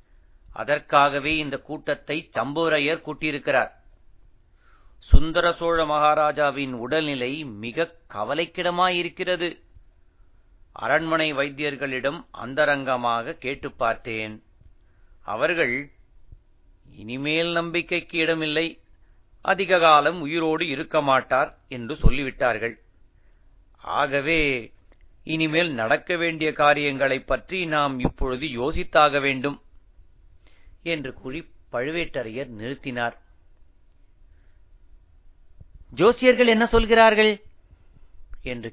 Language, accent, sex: Tamil, native, male